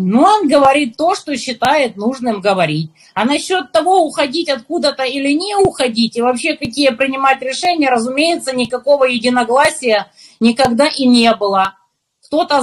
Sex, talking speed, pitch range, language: female, 140 wpm, 235-320 Hz, Russian